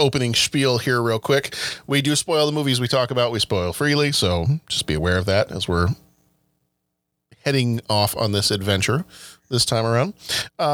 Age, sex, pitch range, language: 40-59, male, 105-135 Hz, English